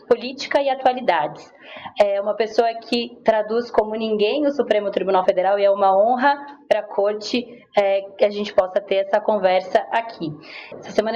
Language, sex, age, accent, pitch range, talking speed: Portuguese, female, 20-39, Brazilian, 200-245 Hz, 170 wpm